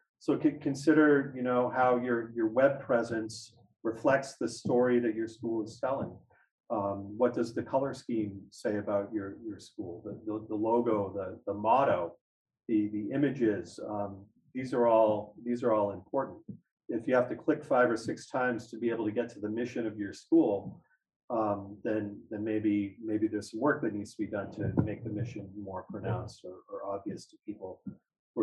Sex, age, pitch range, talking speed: male, 40-59, 105-125 Hz, 190 wpm